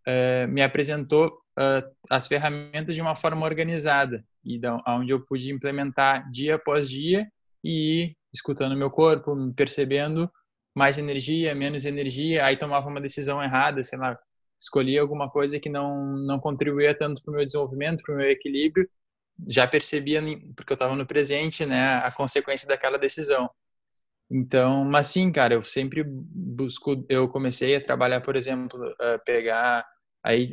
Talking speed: 145 wpm